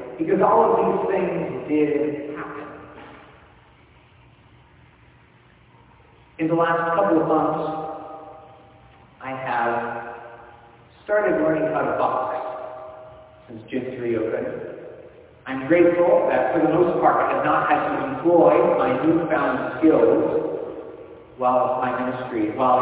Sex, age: male, 40-59